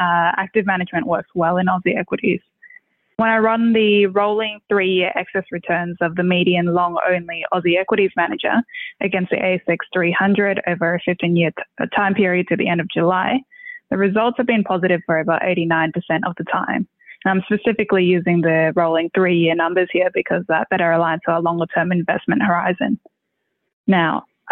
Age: 10-29